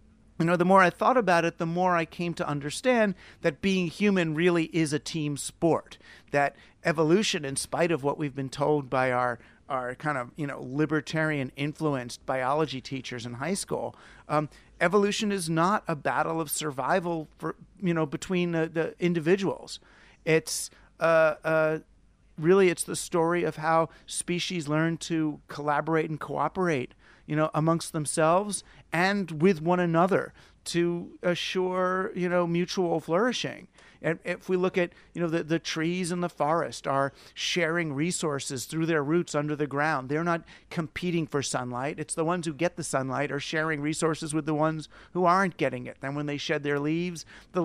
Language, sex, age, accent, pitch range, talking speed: English, male, 50-69, American, 145-175 Hz, 175 wpm